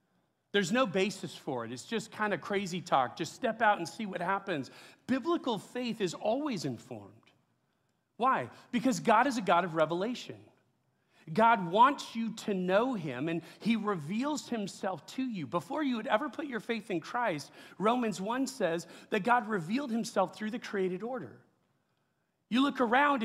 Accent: American